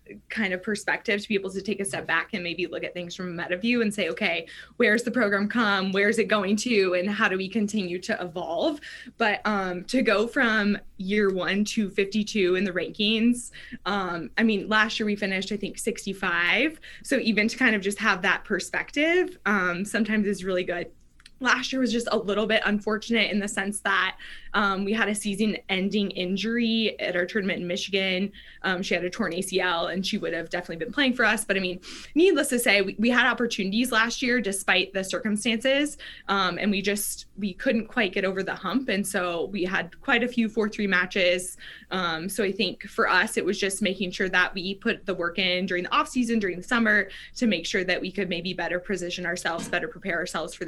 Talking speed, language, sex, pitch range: 220 wpm, English, female, 185-220 Hz